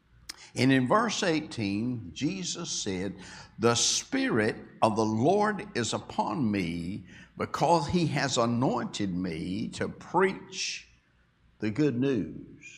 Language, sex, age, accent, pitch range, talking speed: English, male, 60-79, American, 110-170 Hz, 115 wpm